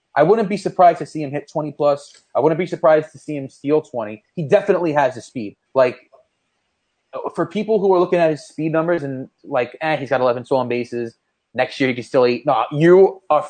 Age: 30-49